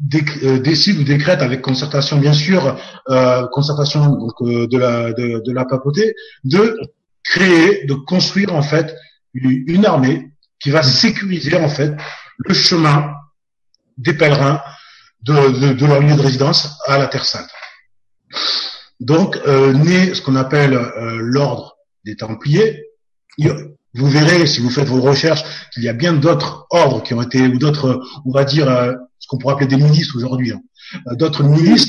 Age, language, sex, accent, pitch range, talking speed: 30-49, French, male, French, 130-160 Hz, 165 wpm